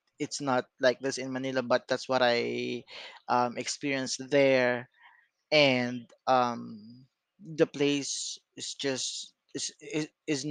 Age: 20-39